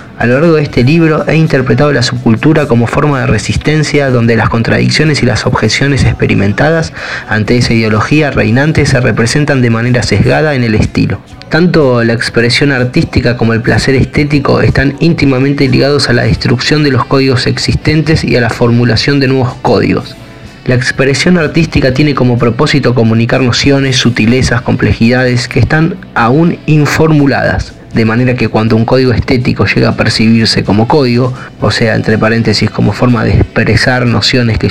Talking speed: 165 wpm